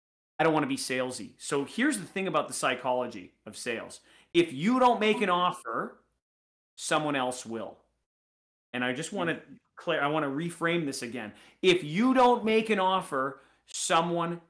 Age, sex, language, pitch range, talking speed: 30-49, male, English, 135-195 Hz, 180 wpm